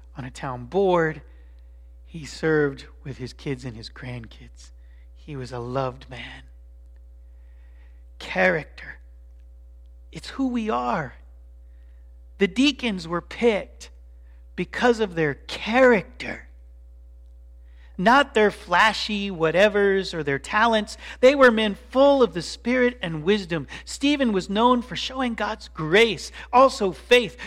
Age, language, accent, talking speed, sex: 40-59, English, American, 120 wpm, male